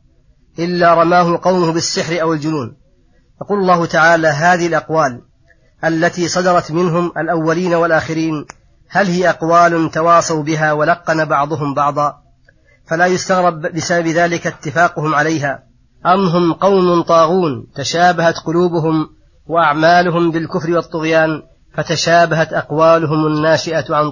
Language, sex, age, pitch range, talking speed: Arabic, female, 30-49, 155-175 Hz, 105 wpm